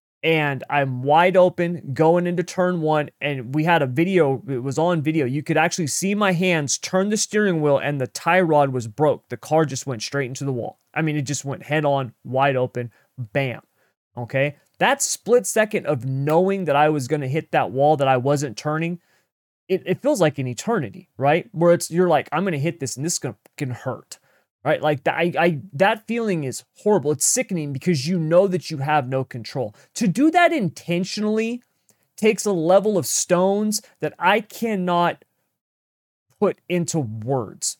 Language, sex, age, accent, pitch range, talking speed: English, male, 30-49, American, 140-180 Hz, 195 wpm